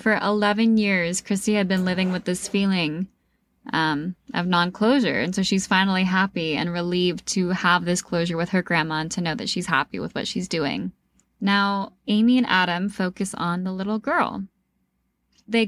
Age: 10-29